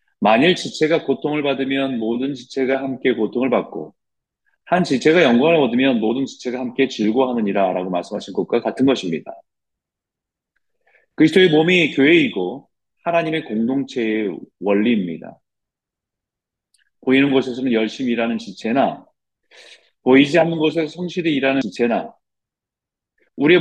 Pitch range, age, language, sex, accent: 110-150 Hz, 40-59, Korean, male, native